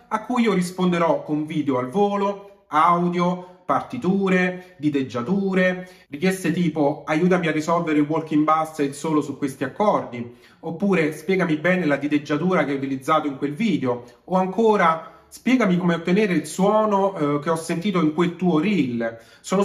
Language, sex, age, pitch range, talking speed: Italian, male, 30-49, 145-185 Hz, 155 wpm